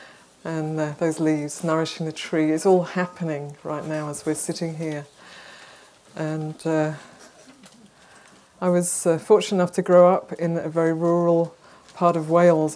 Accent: British